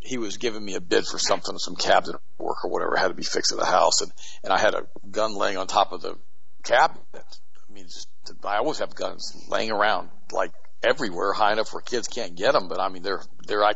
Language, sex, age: English, male, 50-69